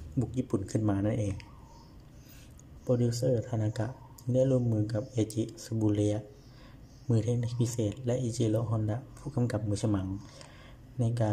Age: 20-39